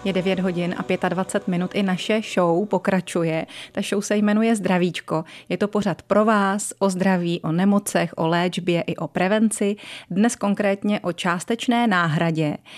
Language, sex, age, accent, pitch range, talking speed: Czech, female, 30-49, native, 175-205 Hz, 160 wpm